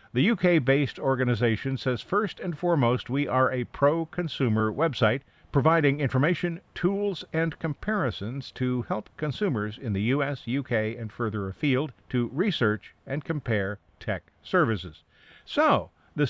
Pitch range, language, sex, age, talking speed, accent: 110-150 Hz, English, male, 50-69, 130 wpm, American